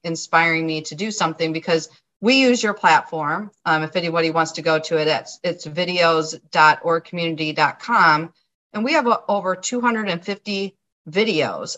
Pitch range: 160-205 Hz